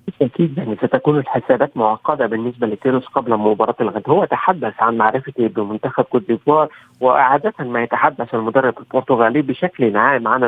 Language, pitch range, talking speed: Arabic, 115-145 Hz, 145 wpm